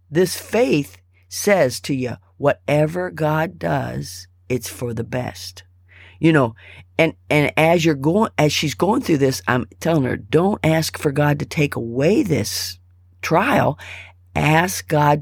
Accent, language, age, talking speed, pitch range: American, English, 50-69, 150 wpm, 90-145 Hz